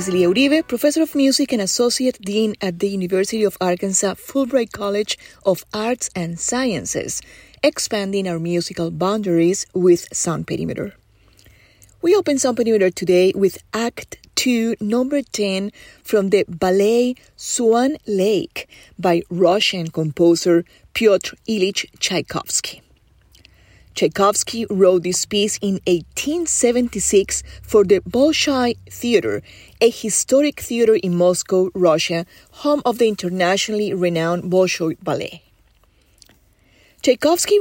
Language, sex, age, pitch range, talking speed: English, female, 30-49, 175-240 Hz, 110 wpm